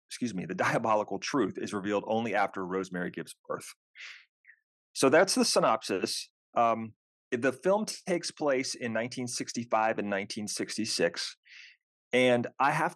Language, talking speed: English, 130 wpm